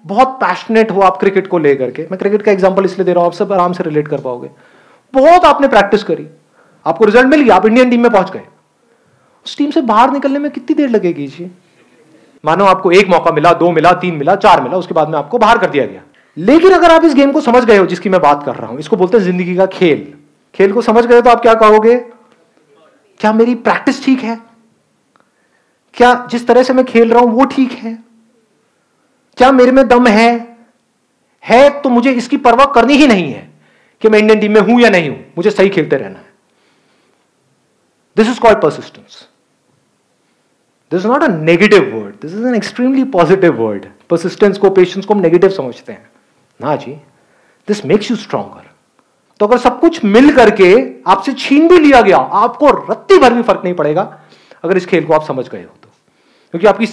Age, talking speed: 40-59, 210 wpm